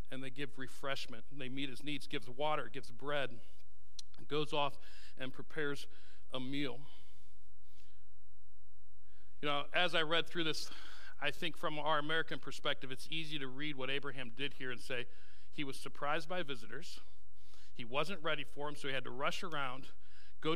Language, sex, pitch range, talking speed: English, male, 100-155 Hz, 170 wpm